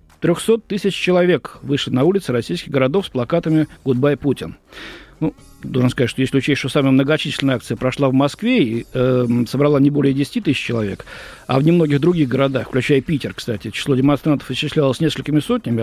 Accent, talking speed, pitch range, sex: native, 175 wpm, 130-180 Hz, male